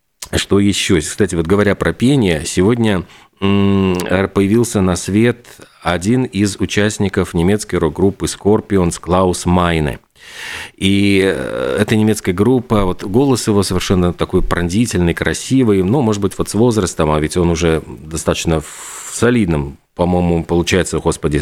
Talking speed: 130 wpm